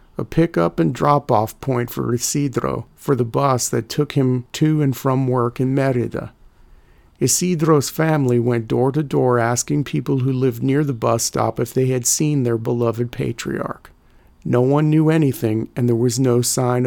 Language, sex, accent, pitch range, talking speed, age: English, male, American, 125-150 Hz, 160 wpm, 50-69